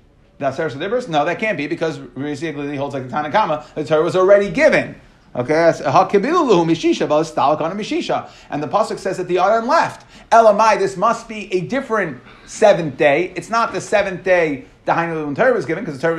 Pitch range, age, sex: 150-195 Hz, 30-49, male